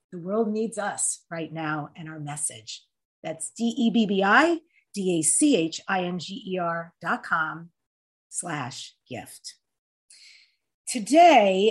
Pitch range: 185-255 Hz